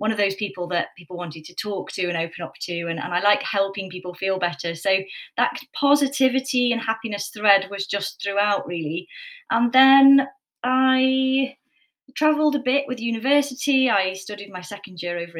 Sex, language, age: female, English, 30-49